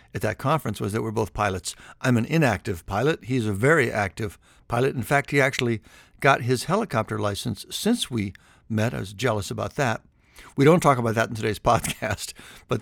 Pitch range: 105-135 Hz